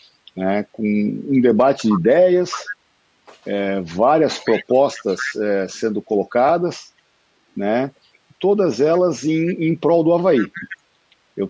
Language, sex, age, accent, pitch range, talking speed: Portuguese, male, 50-69, Brazilian, 110-165 Hz, 110 wpm